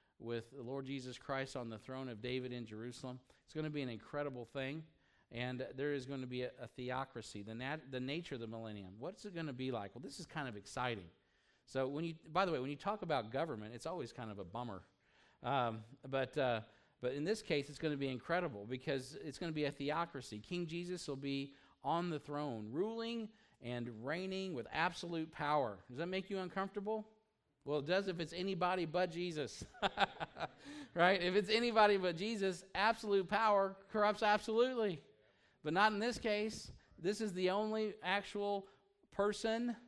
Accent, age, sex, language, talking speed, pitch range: American, 50-69, male, English, 195 wpm, 130-205 Hz